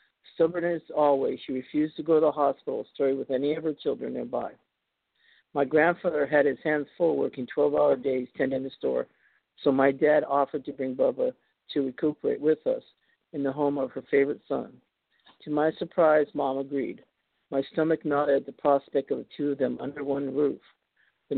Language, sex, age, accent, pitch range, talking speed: English, male, 50-69, American, 140-170 Hz, 185 wpm